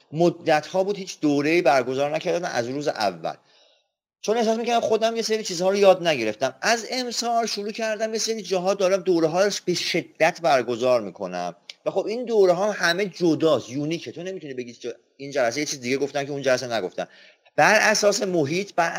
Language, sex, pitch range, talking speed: Persian, male, 140-195 Hz, 185 wpm